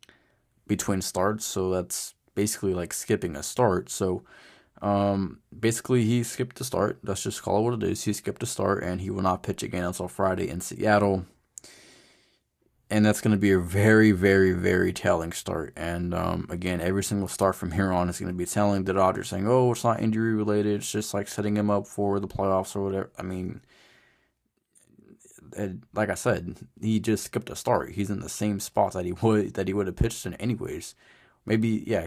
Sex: male